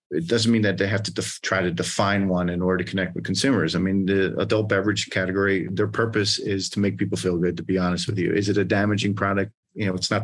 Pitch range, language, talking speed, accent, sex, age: 90-105 Hz, English, 265 wpm, American, male, 30-49